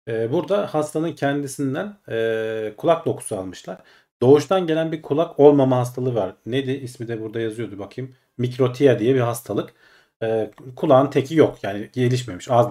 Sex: male